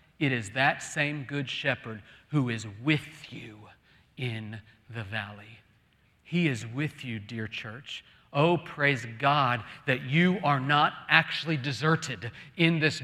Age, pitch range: 40-59, 145-215 Hz